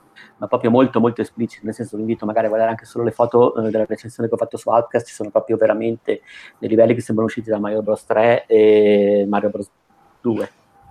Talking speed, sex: 225 wpm, male